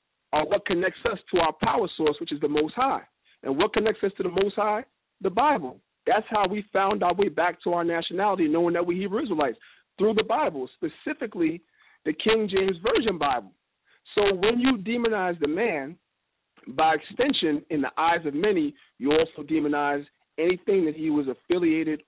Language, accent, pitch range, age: English, American, 160-225 Hz, 50-69